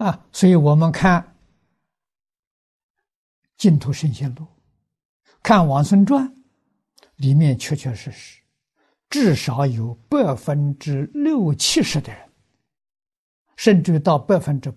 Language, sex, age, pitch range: Chinese, male, 60-79, 135-200 Hz